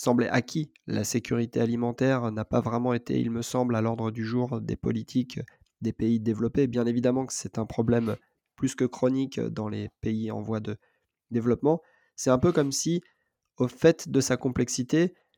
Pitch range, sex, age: 120-145 Hz, male, 20-39